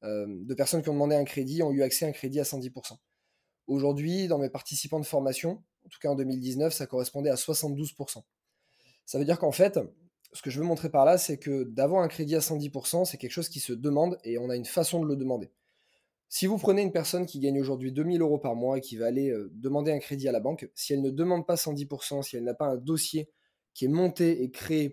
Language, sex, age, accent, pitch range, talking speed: French, male, 20-39, French, 130-165 Hz, 250 wpm